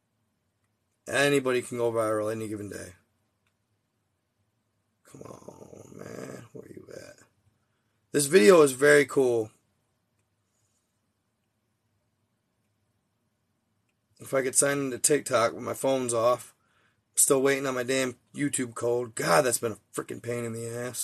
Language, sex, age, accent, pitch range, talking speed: English, male, 20-39, American, 105-125 Hz, 125 wpm